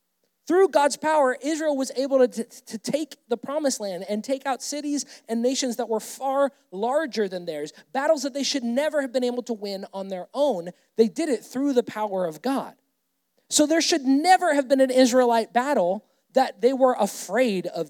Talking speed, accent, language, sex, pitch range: 200 wpm, American, English, male, 225-280 Hz